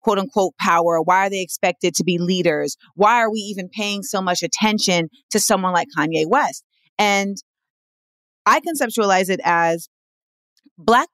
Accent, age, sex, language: American, 30-49, female, English